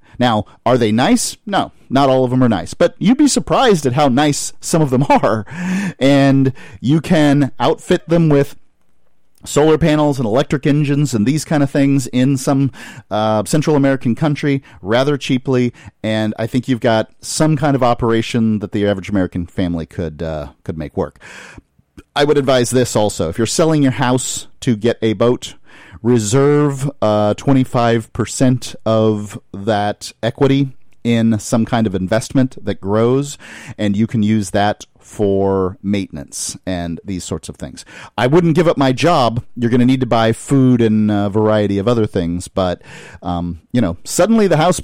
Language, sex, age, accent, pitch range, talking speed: English, male, 40-59, American, 105-140 Hz, 175 wpm